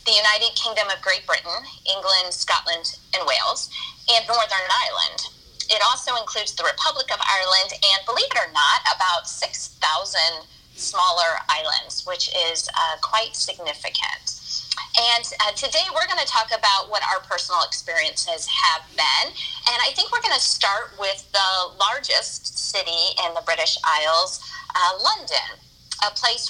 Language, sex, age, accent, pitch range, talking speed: English, female, 30-49, American, 190-275 Hz, 150 wpm